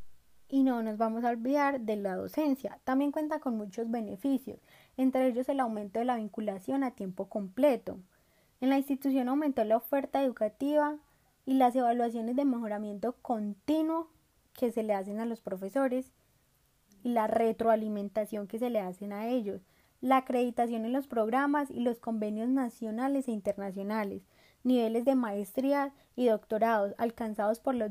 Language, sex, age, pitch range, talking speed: Spanish, female, 10-29, 215-265 Hz, 155 wpm